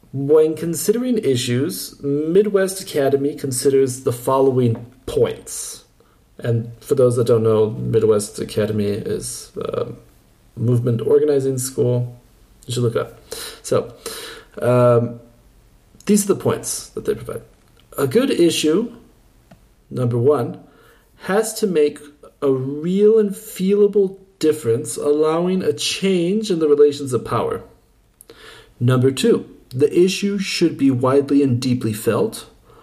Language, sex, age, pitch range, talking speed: English, male, 40-59, 120-190 Hz, 120 wpm